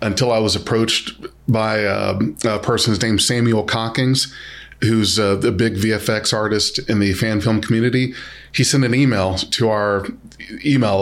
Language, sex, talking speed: English, male, 160 wpm